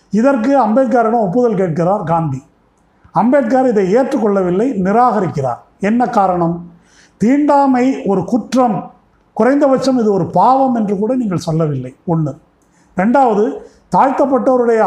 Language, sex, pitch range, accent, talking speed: Tamil, male, 180-250 Hz, native, 100 wpm